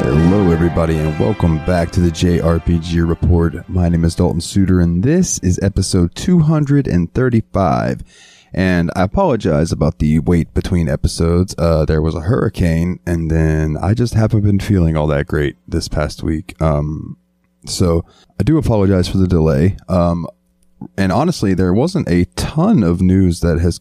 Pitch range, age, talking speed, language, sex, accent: 85-105 Hz, 20-39, 160 wpm, English, male, American